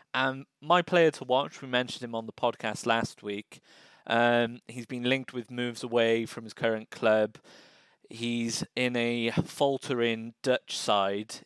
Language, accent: English, British